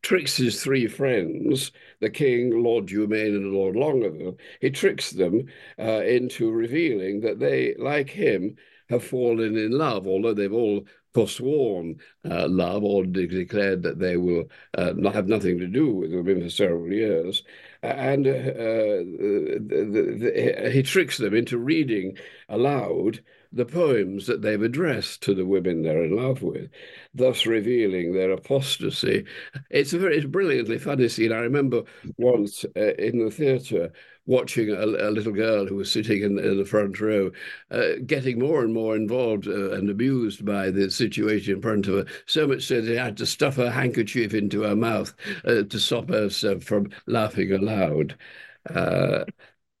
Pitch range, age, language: 100-130 Hz, 60-79, English